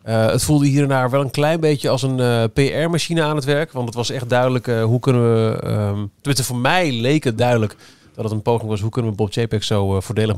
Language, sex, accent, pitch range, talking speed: Dutch, male, Dutch, 115-145 Hz, 260 wpm